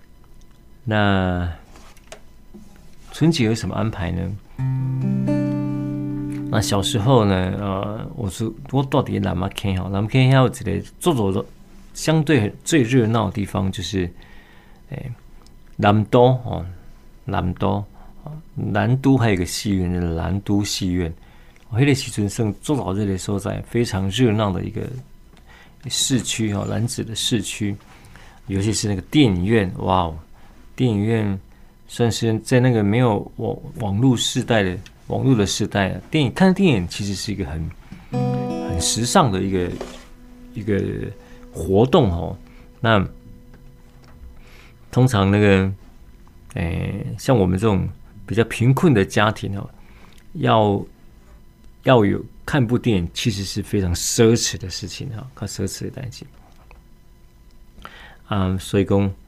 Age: 50-69